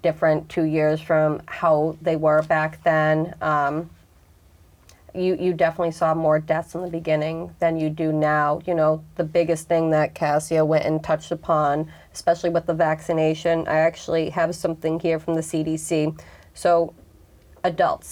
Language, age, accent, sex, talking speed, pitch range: English, 30-49, American, female, 160 wpm, 155-170 Hz